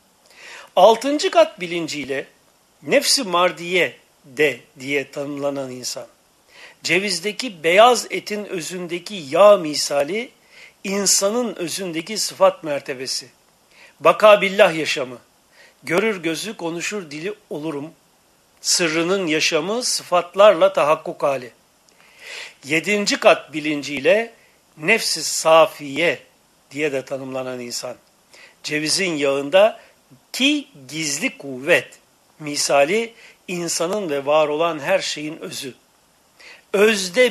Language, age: Turkish, 60-79